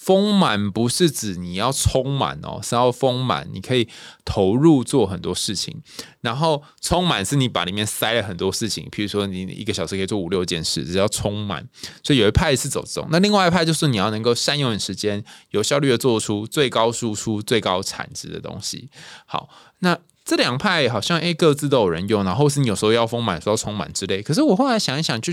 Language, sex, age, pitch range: Chinese, male, 20-39, 100-145 Hz